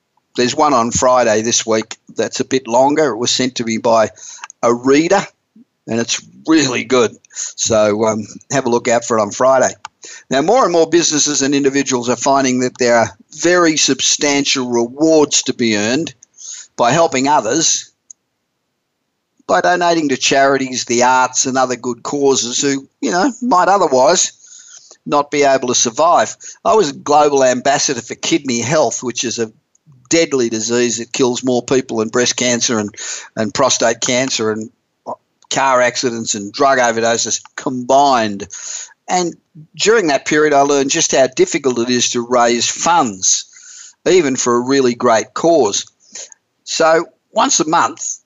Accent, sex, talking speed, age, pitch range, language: Australian, male, 160 wpm, 50-69, 120-150 Hz, English